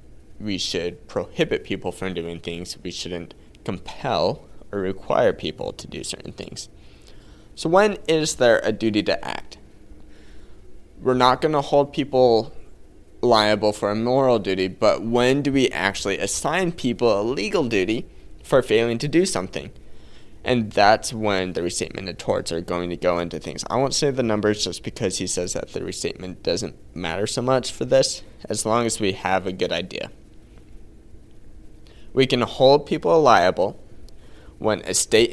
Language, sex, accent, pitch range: English, male, American, 90-115 Hz